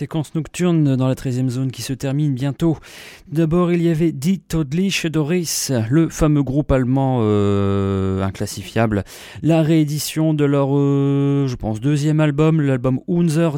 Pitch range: 115-150 Hz